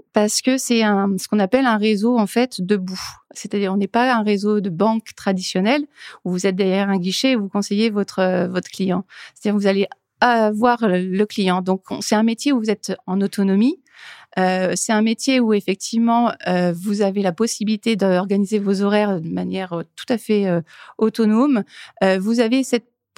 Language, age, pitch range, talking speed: French, 30-49, 190-230 Hz, 190 wpm